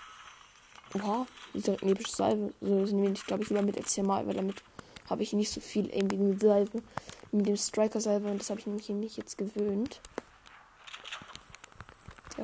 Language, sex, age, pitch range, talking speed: German, female, 20-39, 205-235 Hz, 195 wpm